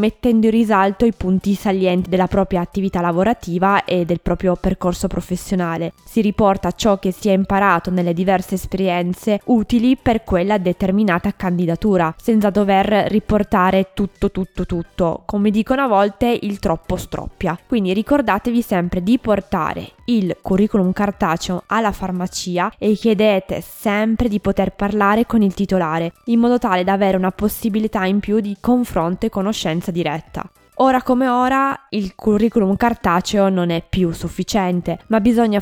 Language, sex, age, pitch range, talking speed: Italian, female, 20-39, 180-215 Hz, 150 wpm